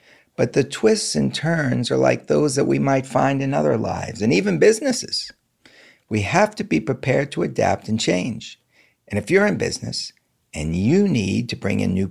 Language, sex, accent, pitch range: English, male, American, 100-160 Hz